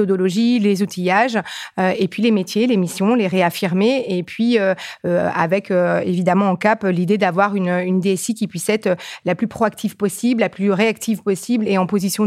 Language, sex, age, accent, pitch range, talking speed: French, female, 30-49, French, 180-205 Hz, 195 wpm